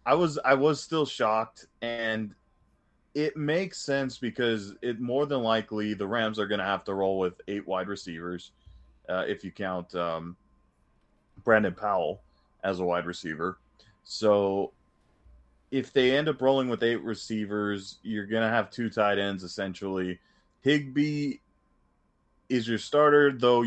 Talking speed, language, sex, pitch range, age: 150 wpm, English, male, 95-130 Hz, 20-39